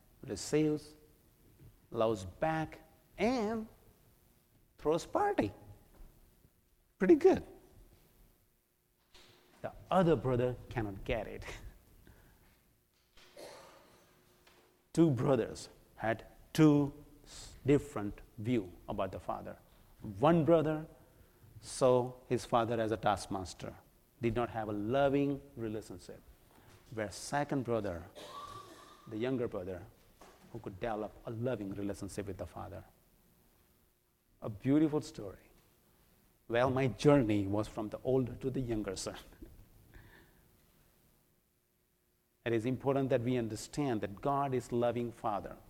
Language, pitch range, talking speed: English, 105-145 Hz, 100 wpm